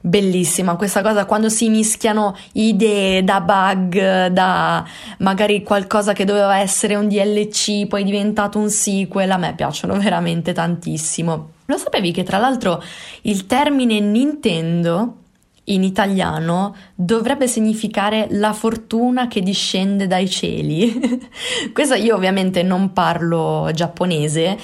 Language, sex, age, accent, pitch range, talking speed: Italian, female, 20-39, native, 180-225 Hz, 120 wpm